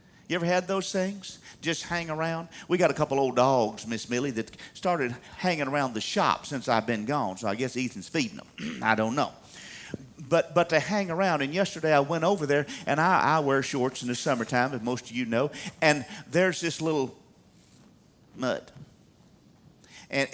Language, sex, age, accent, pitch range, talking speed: English, male, 50-69, American, 125-170 Hz, 190 wpm